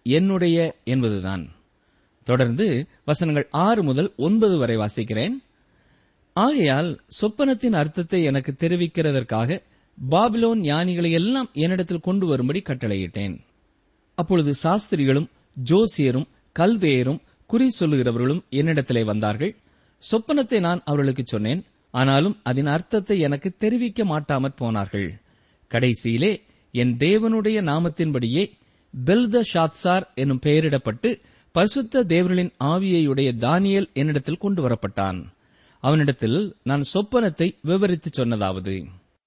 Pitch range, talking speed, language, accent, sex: 125-190 Hz, 90 wpm, Tamil, native, male